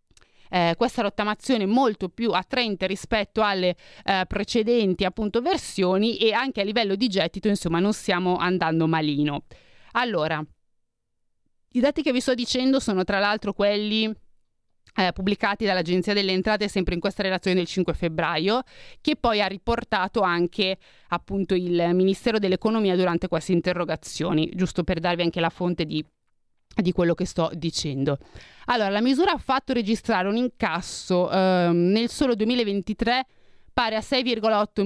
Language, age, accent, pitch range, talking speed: Italian, 30-49, native, 180-225 Hz, 145 wpm